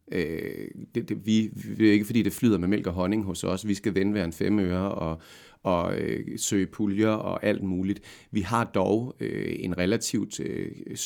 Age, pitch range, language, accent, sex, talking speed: 30-49, 90-110 Hz, Danish, native, male, 190 wpm